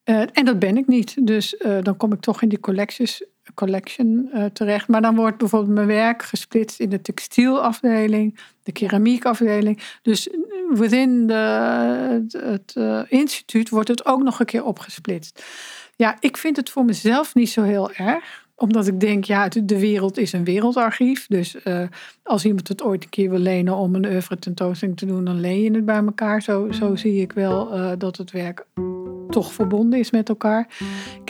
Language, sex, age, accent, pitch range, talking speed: Dutch, female, 50-69, Dutch, 200-240 Hz, 185 wpm